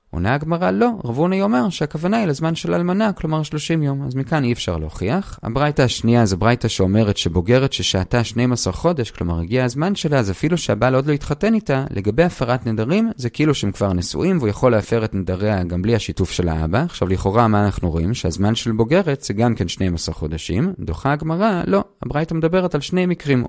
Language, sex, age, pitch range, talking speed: Hebrew, male, 30-49, 100-160 Hz, 200 wpm